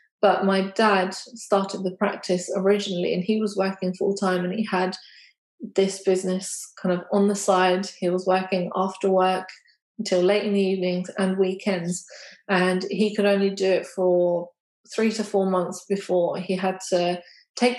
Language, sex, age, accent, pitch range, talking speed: English, female, 20-39, British, 185-215 Hz, 170 wpm